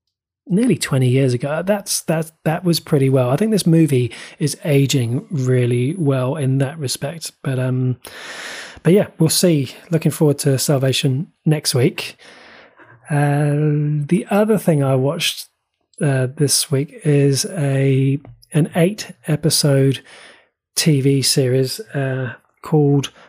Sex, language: male, English